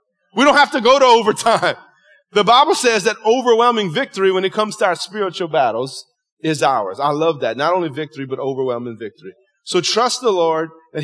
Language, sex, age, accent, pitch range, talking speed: English, male, 30-49, American, 160-210 Hz, 195 wpm